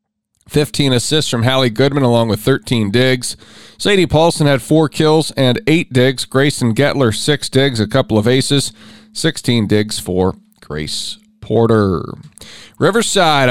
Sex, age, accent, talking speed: male, 40-59, American, 140 wpm